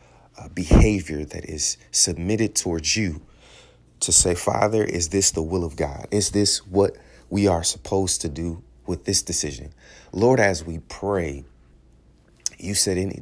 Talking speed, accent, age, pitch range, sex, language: 155 wpm, American, 30-49, 80-100 Hz, male, English